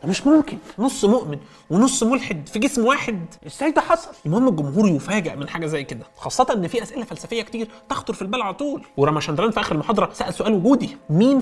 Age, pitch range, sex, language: 30-49, 160-230 Hz, male, Arabic